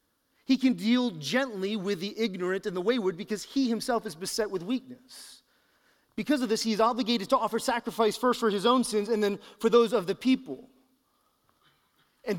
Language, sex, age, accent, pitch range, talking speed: English, male, 30-49, American, 230-285 Hz, 185 wpm